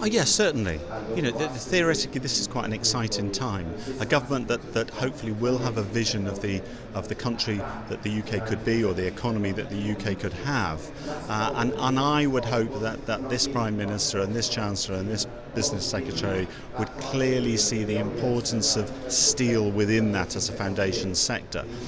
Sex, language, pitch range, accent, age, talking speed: male, English, 100-120 Hz, British, 50-69, 195 wpm